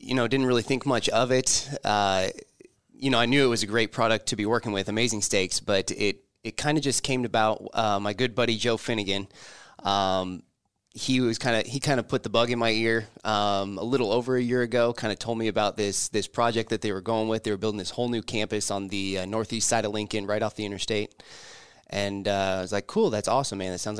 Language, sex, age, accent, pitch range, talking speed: English, male, 20-39, American, 100-120 Hz, 255 wpm